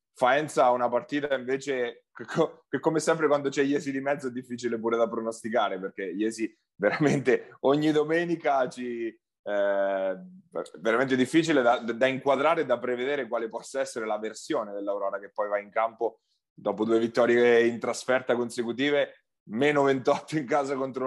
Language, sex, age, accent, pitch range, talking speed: Italian, male, 30-49, native, 110-140 Hz, 155 wpm